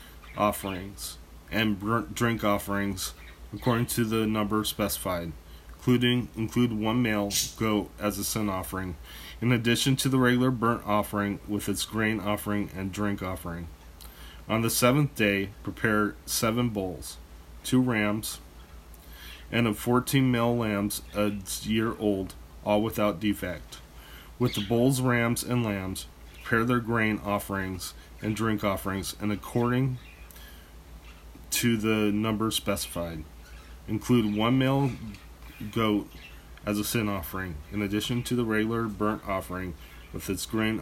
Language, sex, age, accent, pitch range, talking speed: English, male, 20-39, American, 85-110 Hz, 130 wpm